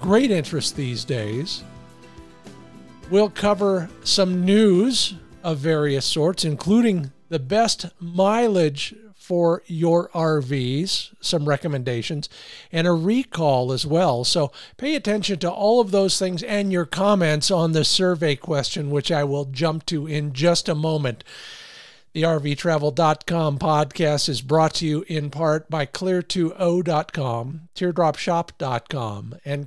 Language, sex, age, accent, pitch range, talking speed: English, male, 50-69, American, 145-190 Hz, 125 wpm